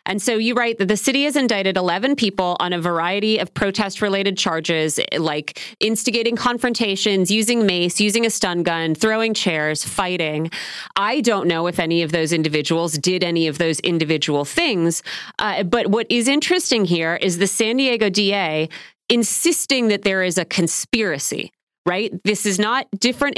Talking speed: 165 wpm